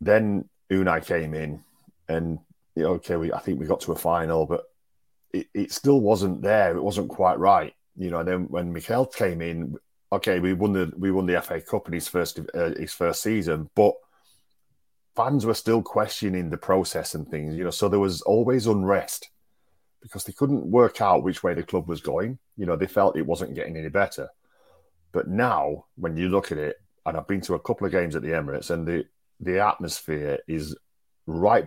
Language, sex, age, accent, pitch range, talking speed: English, male, 40-59, British, 80-105 Hz, 205 wpm